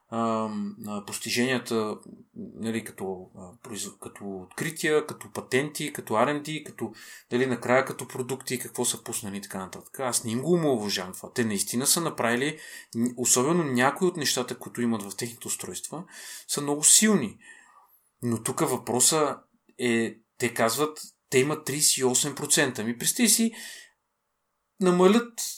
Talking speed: 125 wpm